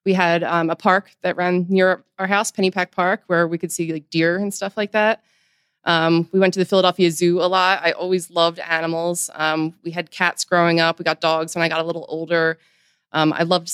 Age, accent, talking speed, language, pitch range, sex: 20-39, American, 230 wpm, English, 165-190 Hz, female